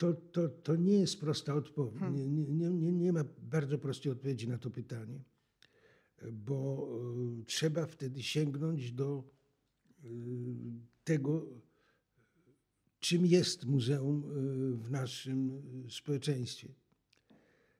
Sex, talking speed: male, 95 wpm